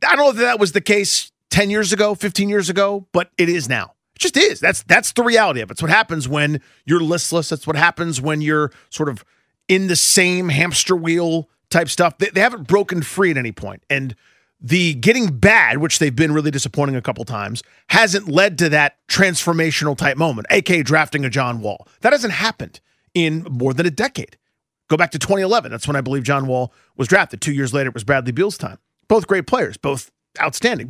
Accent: American